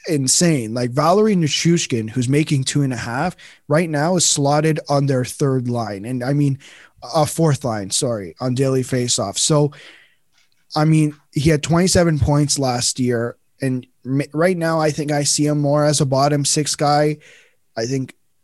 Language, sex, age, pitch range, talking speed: English, male, 20-39, 125-150 Hz, 175 wpm